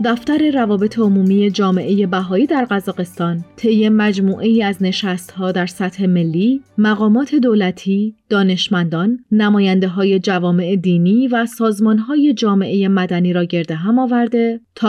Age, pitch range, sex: 30-49, 190-235 Hz, female